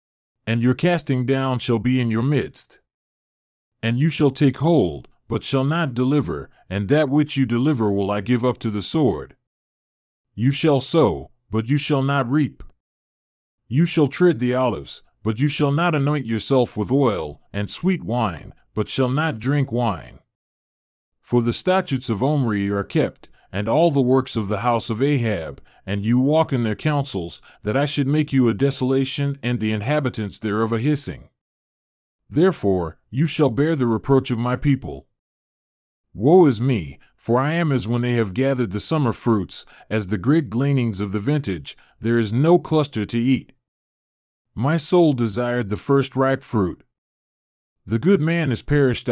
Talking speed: 175 wpm